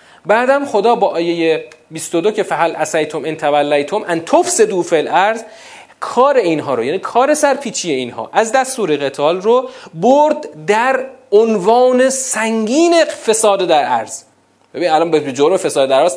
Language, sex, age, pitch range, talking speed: Persian, male, 40-59, 170-255 Hz, 135 wpm